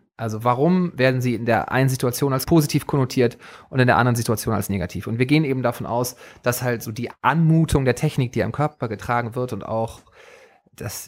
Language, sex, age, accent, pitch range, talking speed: German, male, 30-49, German, 120-150 Hz, 210 wpm